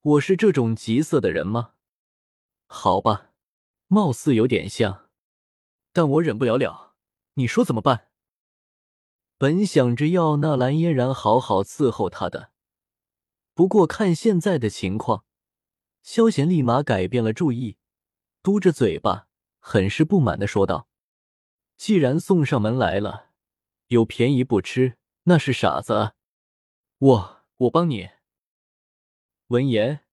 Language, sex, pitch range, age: Chinese, male, 105-165 Hz, 20-39